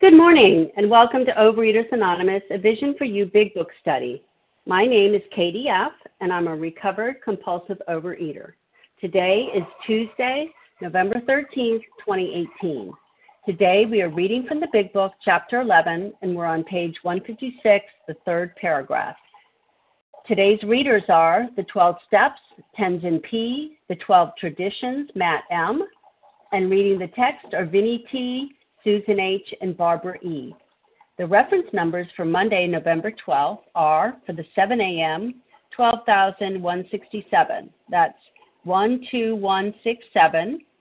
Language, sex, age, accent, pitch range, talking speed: English, female, 50-69, American, 175-235 Hz, 130 wpm